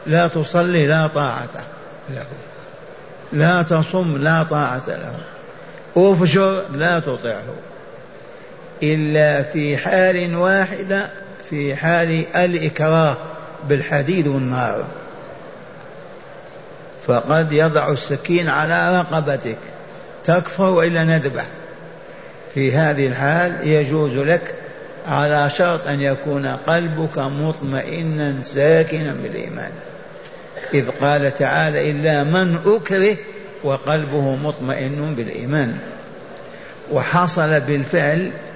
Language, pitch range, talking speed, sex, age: Arabic, 145-175 Hz, 85 wpm, male, 60-79